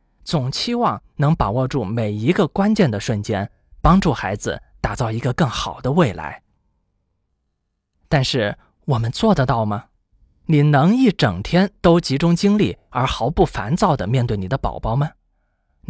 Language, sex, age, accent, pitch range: Chinese, male, 20-39, native, 110-165 Hz